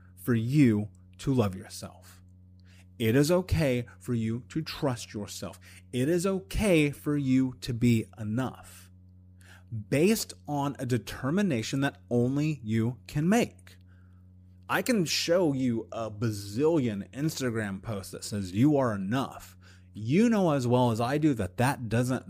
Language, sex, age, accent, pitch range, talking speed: English, male, 30-49, American, 95-145 Hz, 145 wpm